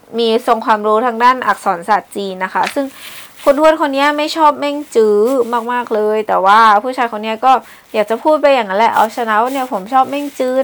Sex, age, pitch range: female, 20-39, 210-260 Hz